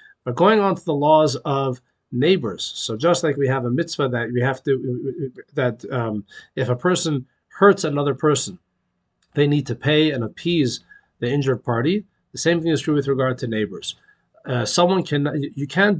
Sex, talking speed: male, 190 wpm